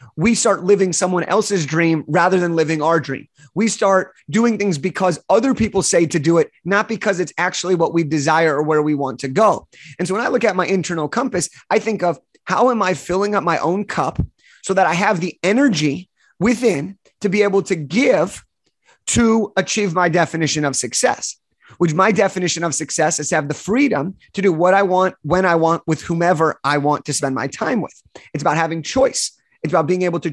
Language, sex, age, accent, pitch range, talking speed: English, male, 30-49, American, 160-195 Hz, 215 wpm